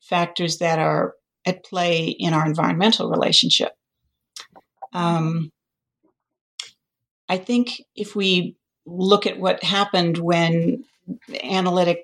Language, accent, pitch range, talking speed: English, American, 165-190 Hz, 100 wpm